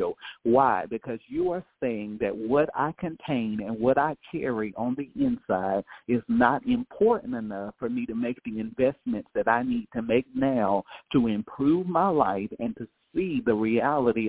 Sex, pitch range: male, 110-140 Hz